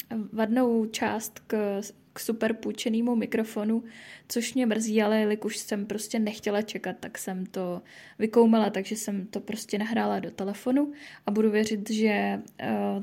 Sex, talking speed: female, 145 wpm